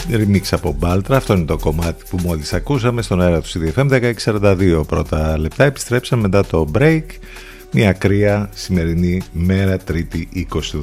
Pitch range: 80-105 Hz